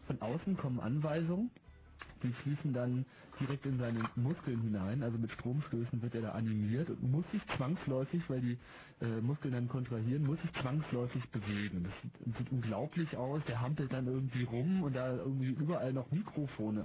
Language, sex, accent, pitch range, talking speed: German, male, German, 120-150 Hz, 175 wpm